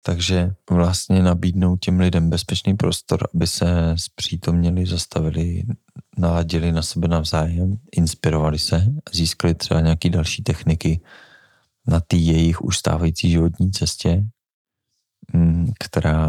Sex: male